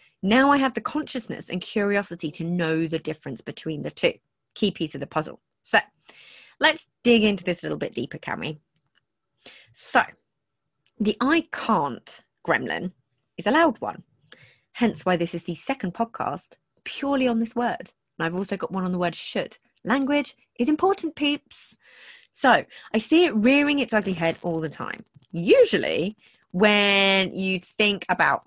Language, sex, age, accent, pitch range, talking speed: English, female, 30-49, British, 170-250 Hz, 165 wpm